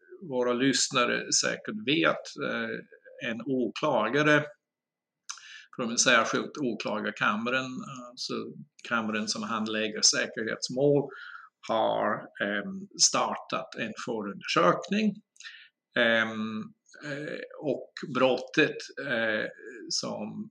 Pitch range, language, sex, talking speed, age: 120-175 Hz, Swedish, male, 60 wpm, 50-69